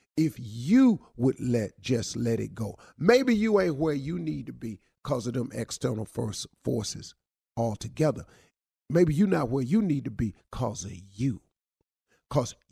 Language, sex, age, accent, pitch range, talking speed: English, male, 50-69, American, 125-180 Hz, 165 wpm